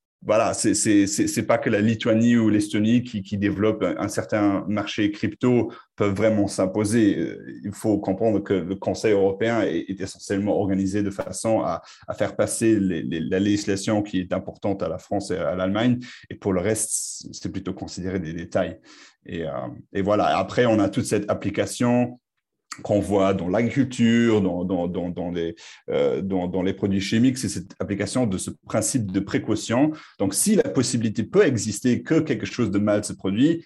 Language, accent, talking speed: French, French, 185 wpm